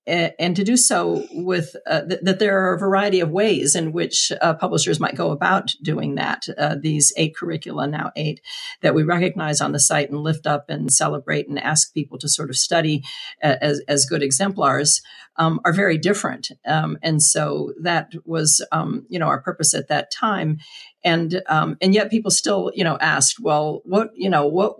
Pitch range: 150-180 Hz